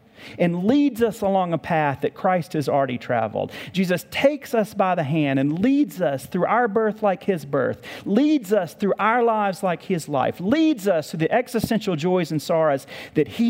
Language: English